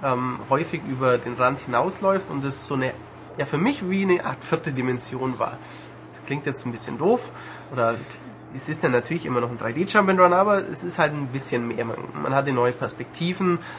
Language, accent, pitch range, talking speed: German, German, 125-155 Hz, 205 wpm